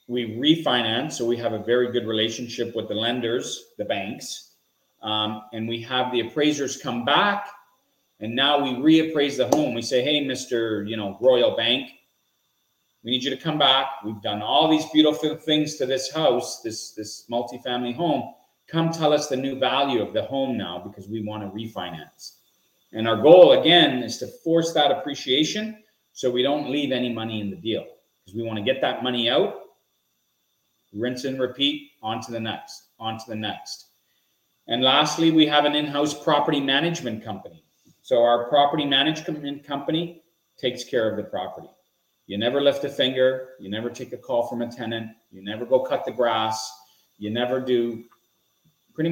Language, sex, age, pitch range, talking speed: English, male, 30-49, 115-150 Hz, 180 wpm